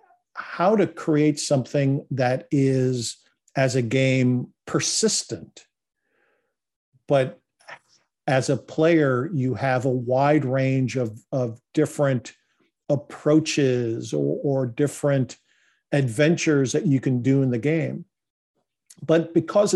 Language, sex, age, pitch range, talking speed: English, male, 50-69, 125-150 Hz, 110 wpm